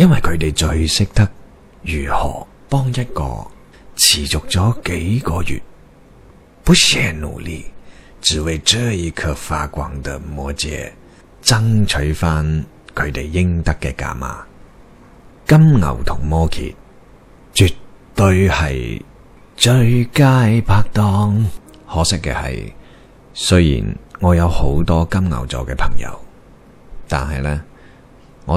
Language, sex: Chinese, male